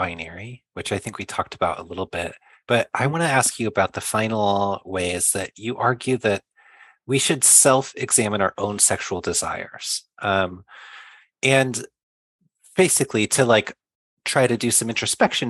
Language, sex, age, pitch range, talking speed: English, male, 30-49, 95-125 Hz, 160 wpm